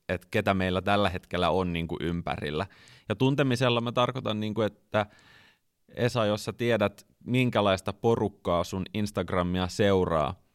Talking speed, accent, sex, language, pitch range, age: 130 wpm, native, male, Finnish, 90-110 Hz, 30-49